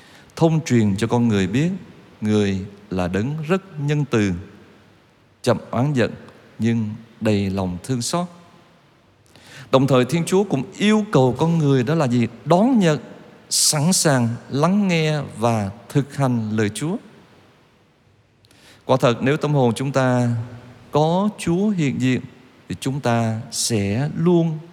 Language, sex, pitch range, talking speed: Vietnamese, male, 105-145 Hz, 145 wpm